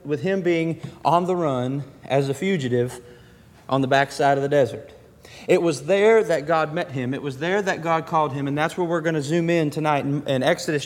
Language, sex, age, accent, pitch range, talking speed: English, male, 30-49, American, 140-170 Hz, 220 wpm